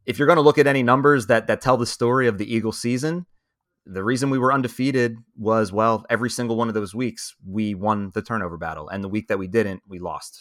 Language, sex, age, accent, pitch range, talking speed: English, male, 30-49, American, 105-130 Hz, 250 wpm